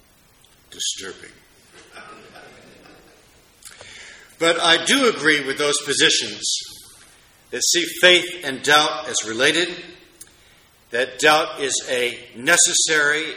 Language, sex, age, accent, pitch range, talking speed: English, male, 60-79, American, 135-170 Hz, 90 wpm